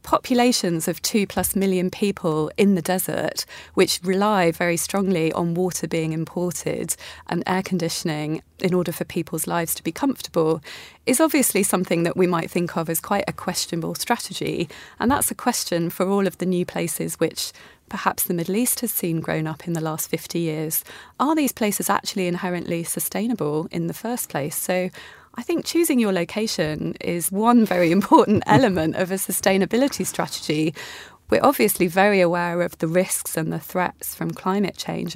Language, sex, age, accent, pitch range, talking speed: English, female, 30-49, British, 170-200 Hz, 175 wpm